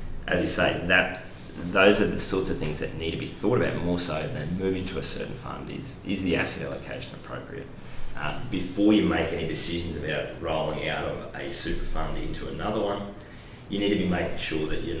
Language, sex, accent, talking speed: English, male, Australian, 215 wpm